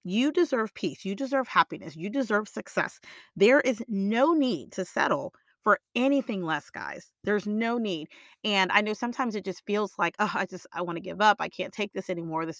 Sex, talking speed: female, 210 wpm